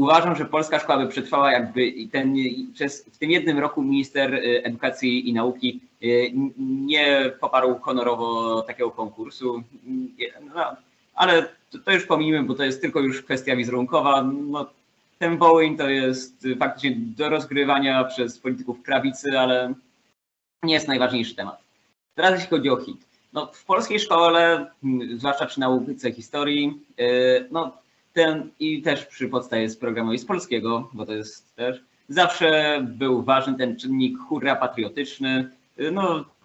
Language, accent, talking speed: Polish, native, 140 wpm